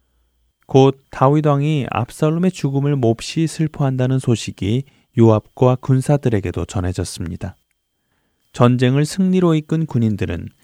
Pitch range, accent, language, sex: 100-140 Hz, native, Korean, male